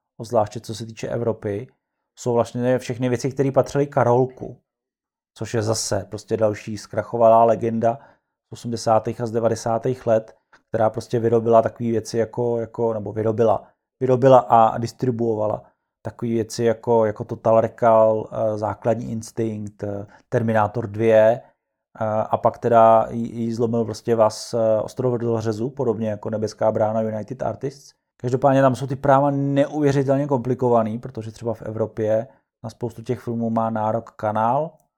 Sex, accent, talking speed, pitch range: male, native, 140 wpm, 110-125 Hz